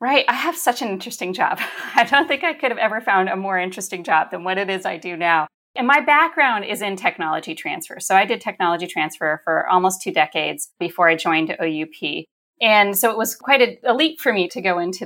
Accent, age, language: American, 30-49, English